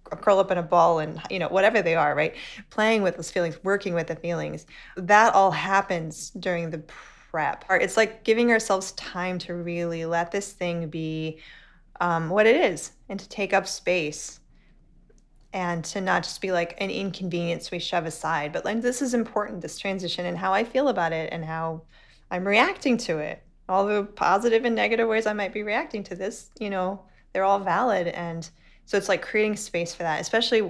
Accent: American